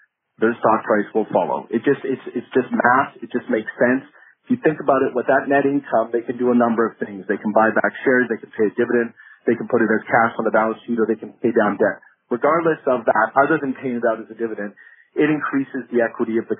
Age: 30-49